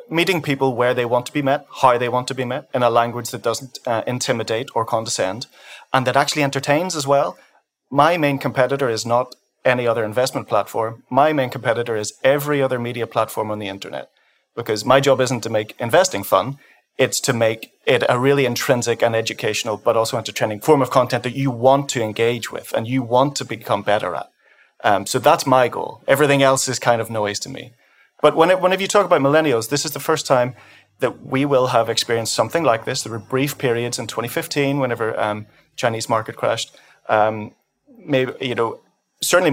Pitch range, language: 115-140 Hz, English